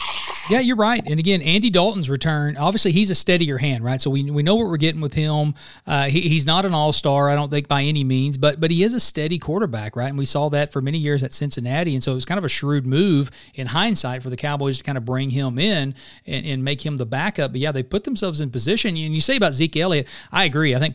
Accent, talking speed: American, 270 wpm